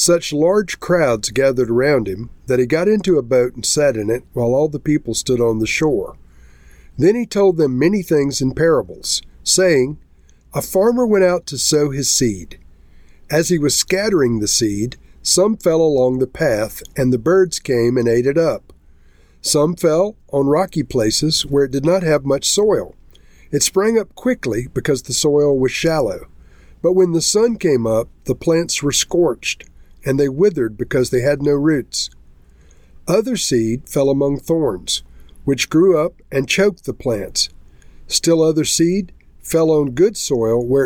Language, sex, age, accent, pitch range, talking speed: English, male, 50-69, American, 110-165 Hz, 175 wpm